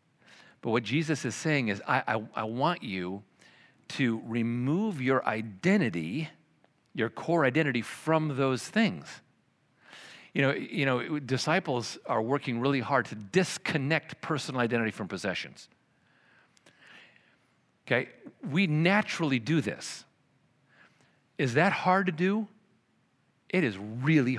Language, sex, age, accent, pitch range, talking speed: English, male, 50-69, American, 110-155 Hz, 115 wpm